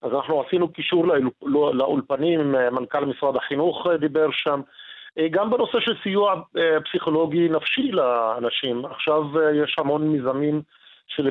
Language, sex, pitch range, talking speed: Hebrew, male, 140-160 Hz, 135 wpm